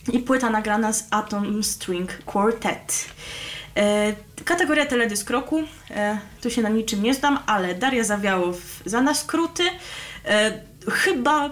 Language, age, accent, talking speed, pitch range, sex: Polish, 20-39, native, 115 wpm, 200-245 Hz, female